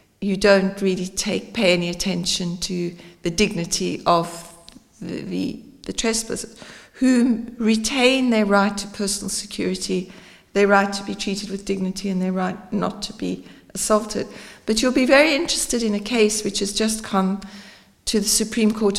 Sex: female